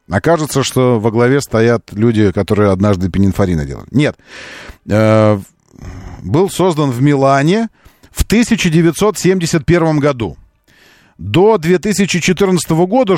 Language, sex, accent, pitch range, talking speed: Russian, male, native, 115-170 Hz, 100 wpm